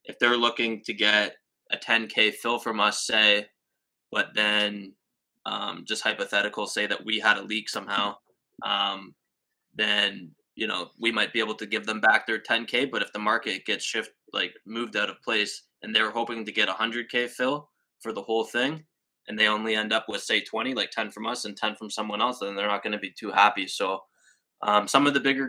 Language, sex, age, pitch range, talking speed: English, male, 20-39, 105-120 Hz, 210 wpm